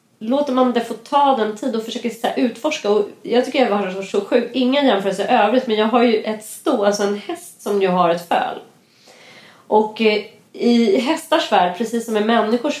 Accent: native